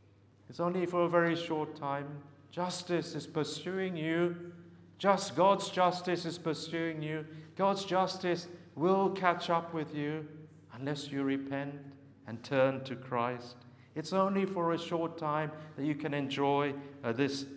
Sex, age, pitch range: male, 50-69, 130-170 Hz